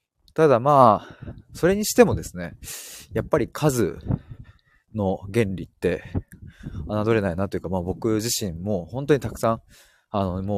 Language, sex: Japanese, male